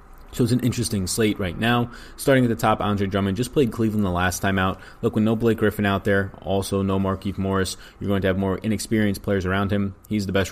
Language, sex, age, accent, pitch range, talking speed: English, male, 20-39, American, 90-105 Hz, 245 wpm